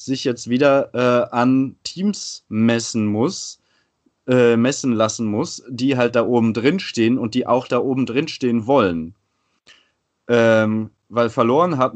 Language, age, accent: German, 30-49, German